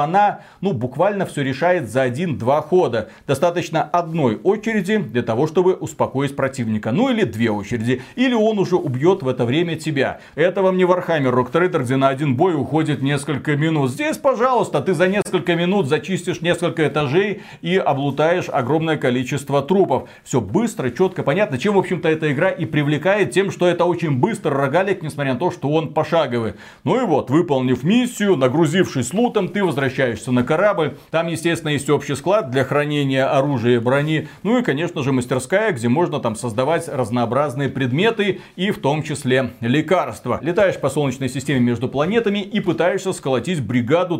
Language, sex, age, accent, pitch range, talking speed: Russian, male, 40-59, native, 130-180 Hz, 170 wpm